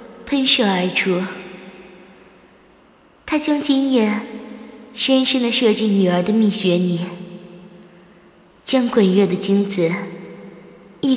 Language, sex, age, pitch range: Chinese, female, 20-39, 190-225 Hz